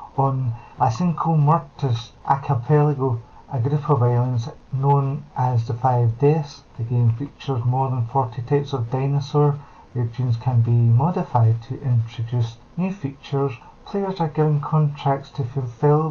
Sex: male